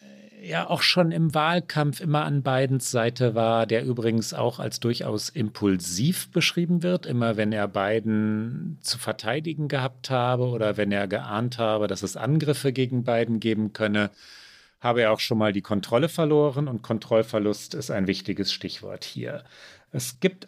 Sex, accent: male, German